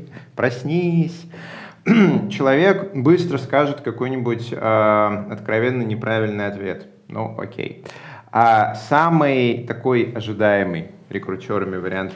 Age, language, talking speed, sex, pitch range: 30-49, Russian, 85 wpm, male, 105-130 Hz